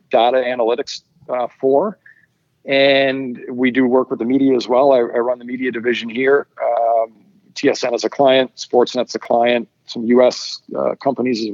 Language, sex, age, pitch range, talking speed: English, male, 40-59, 120-140 Hz, 170 wpm